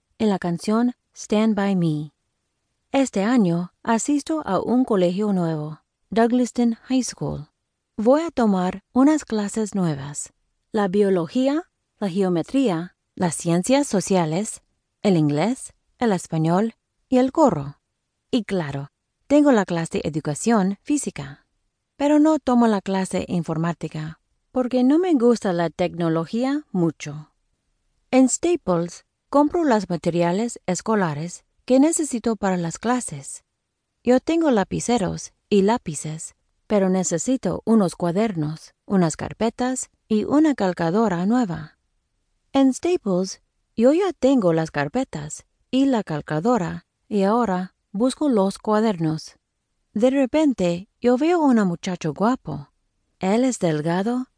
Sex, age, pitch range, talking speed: female, 30-49, 170-250 Hz, 120 wpm